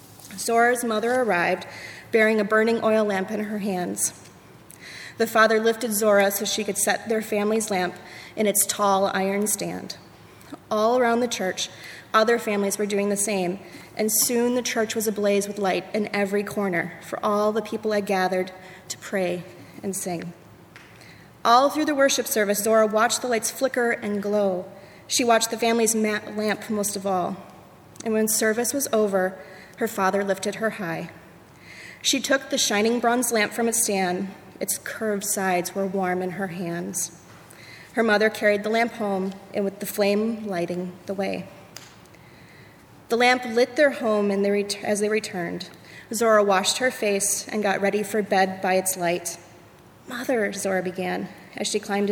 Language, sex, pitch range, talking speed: English, female, 190-225 Hz, 165 wpm